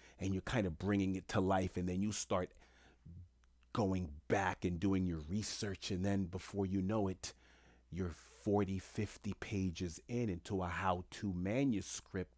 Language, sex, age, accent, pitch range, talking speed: English, male, 30-49, American, 70-100 Hz, 165 wpm